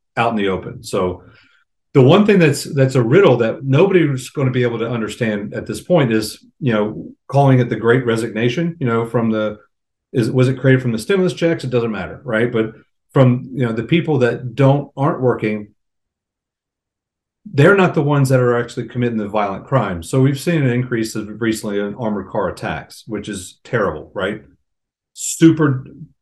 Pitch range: 105-130 Hz